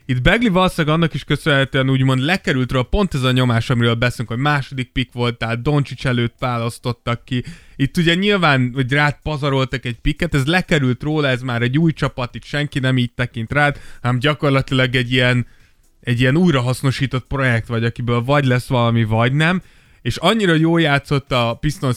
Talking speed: 180 wpm